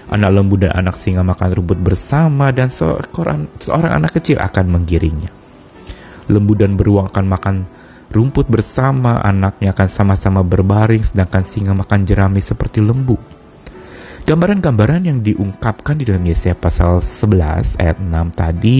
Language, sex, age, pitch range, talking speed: Indonesian, male, 30-49, 90-125 Hz, 140 wpm